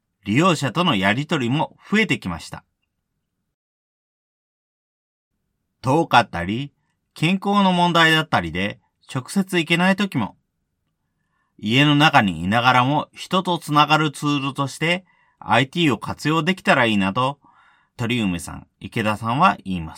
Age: 40-59